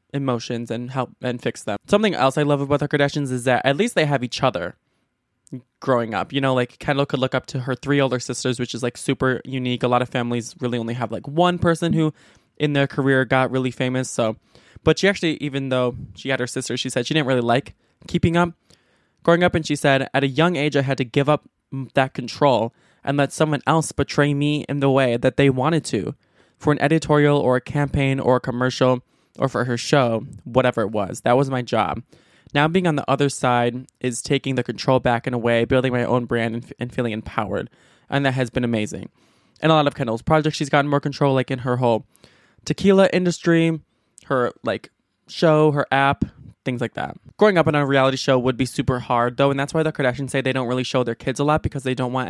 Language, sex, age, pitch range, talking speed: English, male, 20-39, 125-145 Hz, 235 wpm